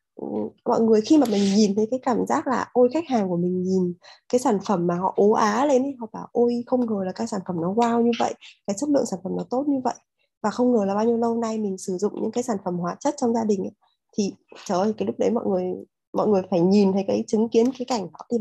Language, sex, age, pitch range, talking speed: Vietnamese, female, 20-39, 205-265 Hz, 290 wpm